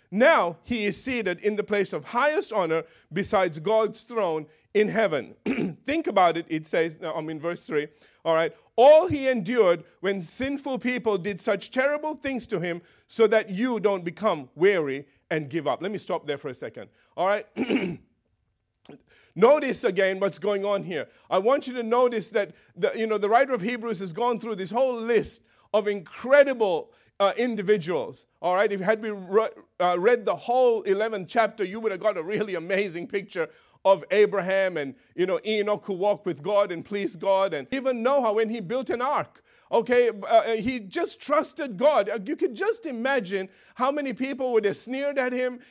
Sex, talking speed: male, 185 wpm